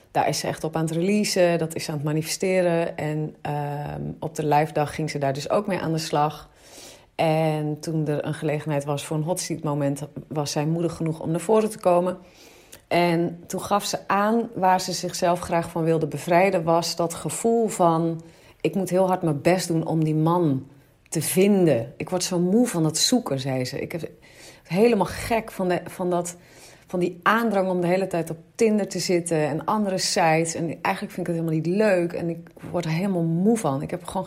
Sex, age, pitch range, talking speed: female, 40-59, 155-185 Hz, 220 wpm